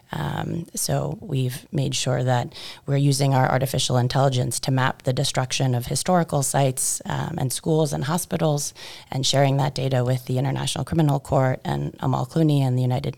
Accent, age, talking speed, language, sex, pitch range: American, 30-49, 175 wpm, English, female, 130-150 Hz